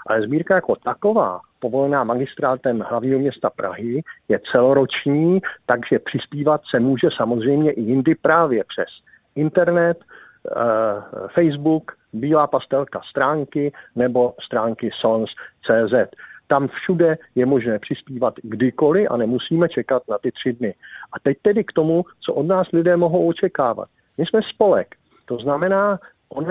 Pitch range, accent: 130-170 Hz, native